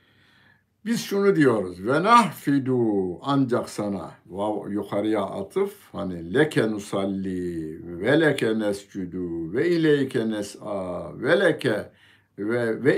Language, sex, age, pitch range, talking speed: Turkish, male, 60-79, 95-120 Hz, 105 wpm